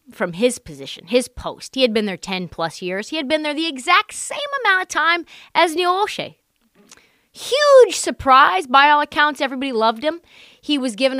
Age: 30-49